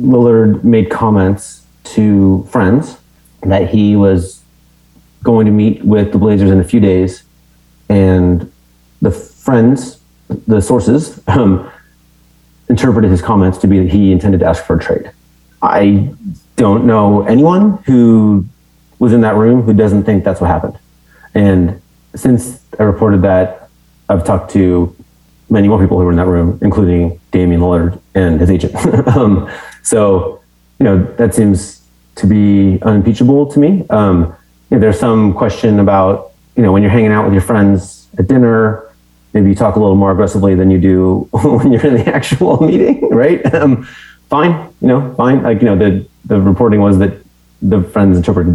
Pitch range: 95-115 Hz